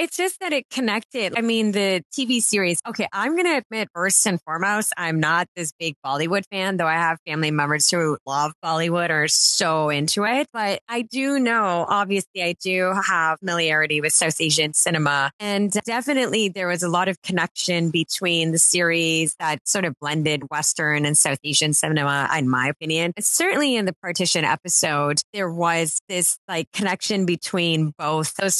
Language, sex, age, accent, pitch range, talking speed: English, female, 30-49, American, 155-205 Hz, 180 wpm